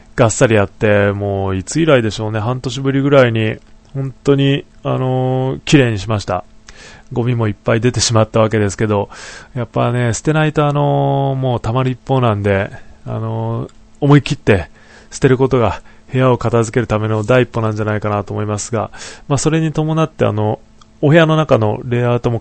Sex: male